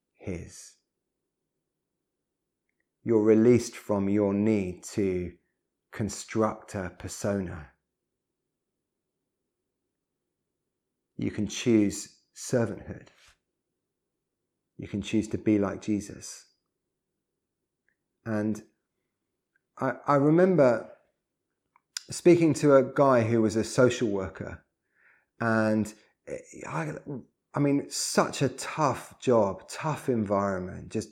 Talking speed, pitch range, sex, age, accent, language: 85 wpm, 105-135 Hz, male, 30-49, British, English